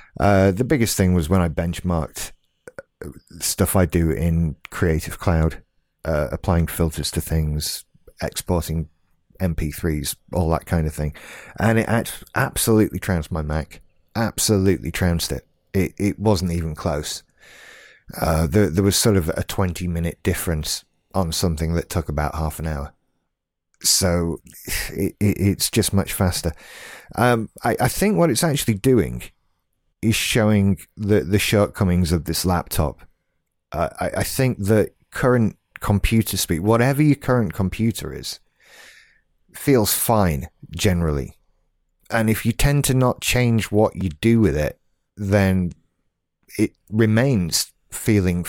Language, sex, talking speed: English, male, 135 wpm